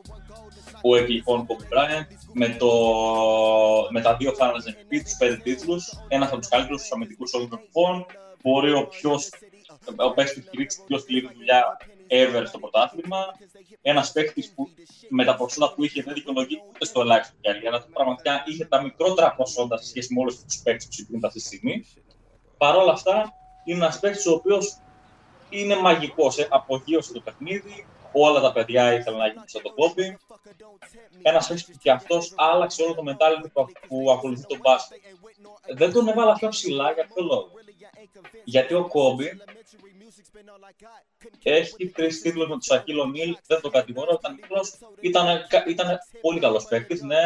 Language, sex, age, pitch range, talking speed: Greek, male, 20-39, 130-195 Hz, 155 wpm